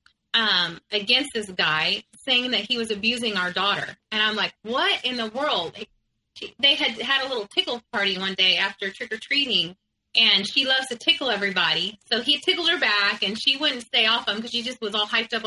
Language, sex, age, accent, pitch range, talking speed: English, female, 30-49, American, 210-275 Hz, 205 wpm